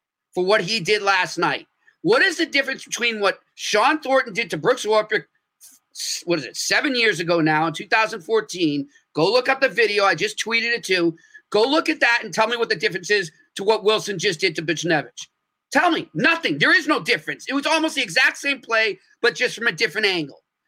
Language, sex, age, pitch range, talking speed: English, male, 40-59, 170-240 Hz, 220 wpm